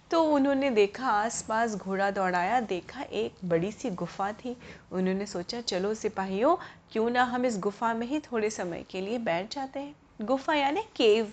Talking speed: 175 wpm